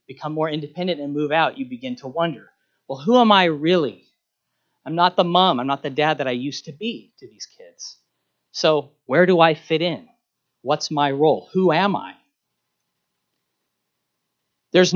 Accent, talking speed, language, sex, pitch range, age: American, 175 wpm, English, male, 150-210 Hz, 40-59